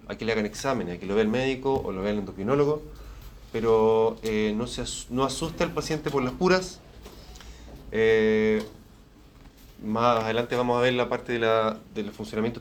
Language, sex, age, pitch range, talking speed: Spanish, male, 30-49, 110-150 Hz, 180 wpm